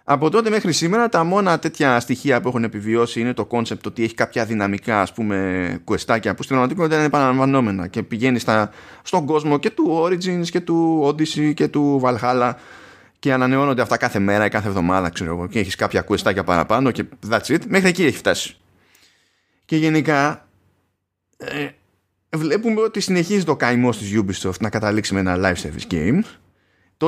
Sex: male